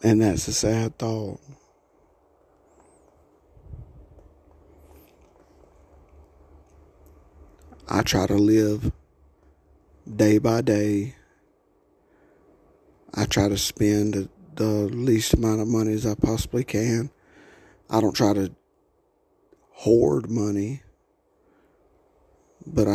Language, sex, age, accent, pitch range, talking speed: English, male, 50-69, American, 100-115 Hz, 85 wpm